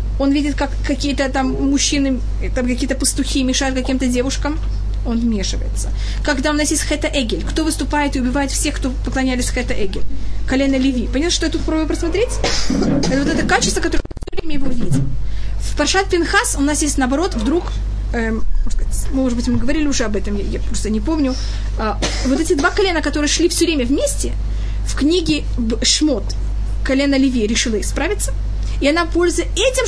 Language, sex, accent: Russian, female, native